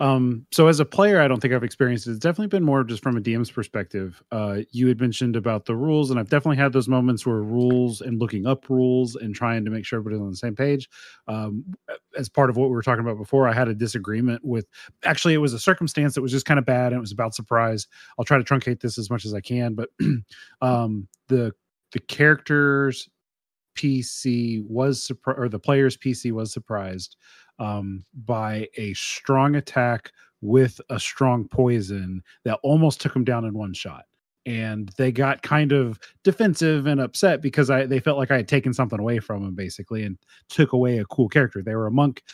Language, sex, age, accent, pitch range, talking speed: English, male, 30-49, American, 110-135 Hz, 215 wpm